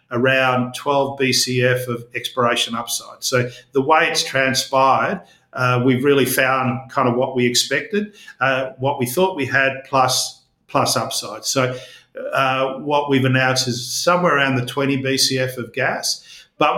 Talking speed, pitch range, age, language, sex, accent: 155 wpm, 125-140 Hz, 50-69, English, male, Australian